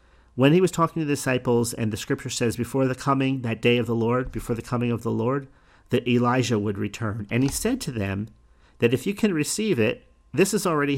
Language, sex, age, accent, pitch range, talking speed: English, male, 50-69, American, 105-140 Hz, 235 wpm